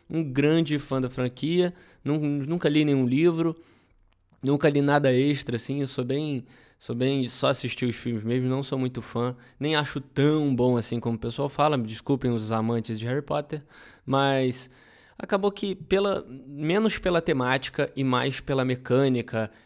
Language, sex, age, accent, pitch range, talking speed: Portuguese, male, 20-39, Brazilian, 120-155 Hz, 170 wpm